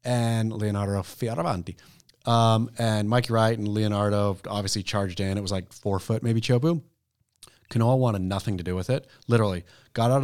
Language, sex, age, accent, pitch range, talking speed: English, male, 30-49, American, 105-130 Hz, 170 wpm